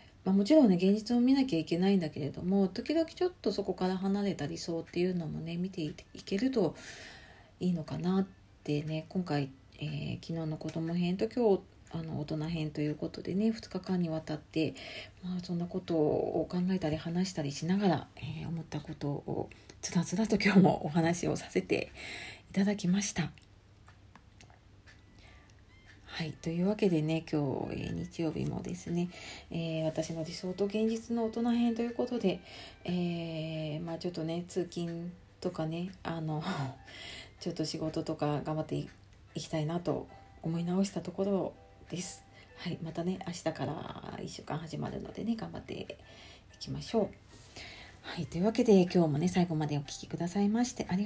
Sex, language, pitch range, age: female, Japanese, 155-195 Hz, 40-59